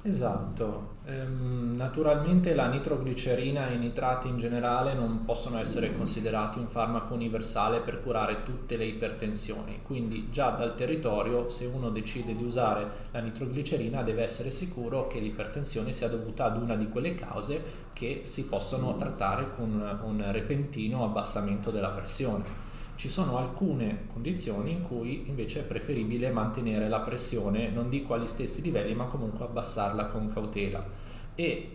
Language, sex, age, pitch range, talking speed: Italian, male, 20-39, 110-135 Hz, 145 wpm